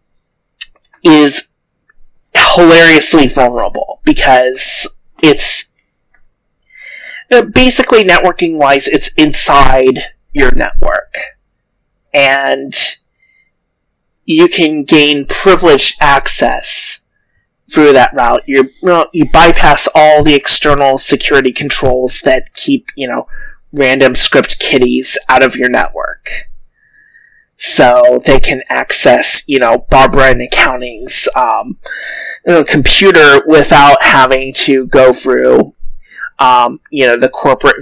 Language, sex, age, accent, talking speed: English, male, 30-49, American, 100 wpm